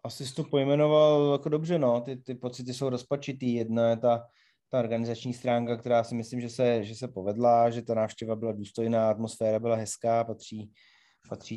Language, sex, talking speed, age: Czech, male, 185 wpm, 30-49